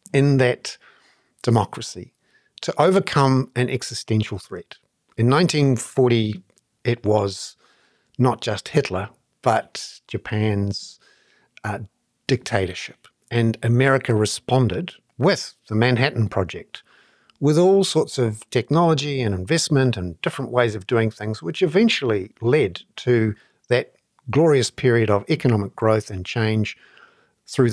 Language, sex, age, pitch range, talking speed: English, male, 50-69, 110-140 Hz, 115 wpm